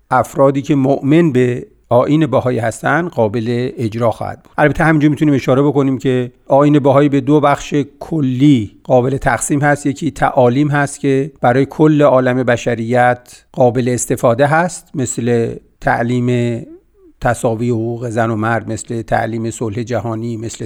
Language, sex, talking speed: Persian, male, 140 wpm